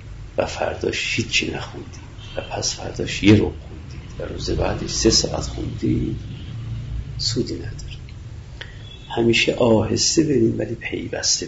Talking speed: 130 wpm